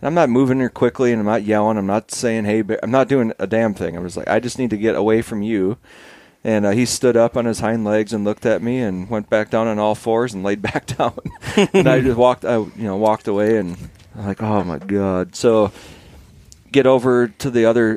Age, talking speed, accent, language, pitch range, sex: 40-59, 245 wpm, American, English, 95-115 Hz, male